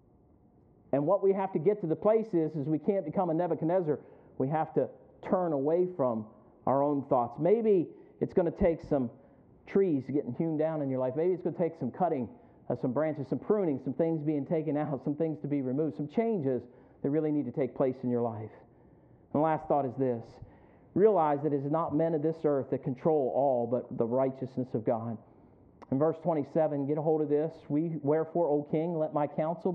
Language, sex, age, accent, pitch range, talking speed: English, male, 50-69, American, 135-165 Hz, 220 wpm